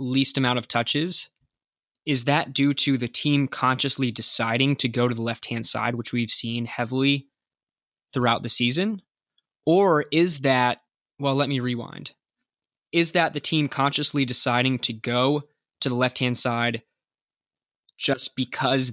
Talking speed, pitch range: 145 wpm, 120-145 Hz